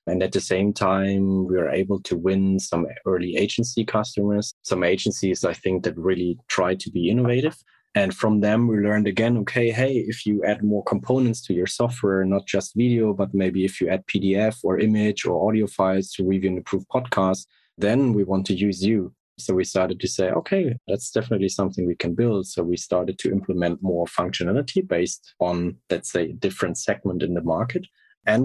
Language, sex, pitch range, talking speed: English, male, 90-110 Hz, 200 wpm